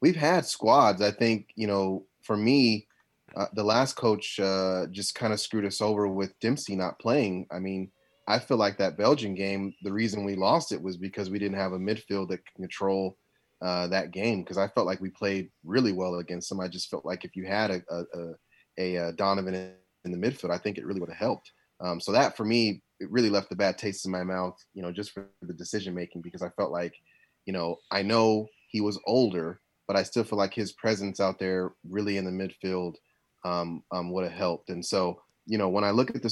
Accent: American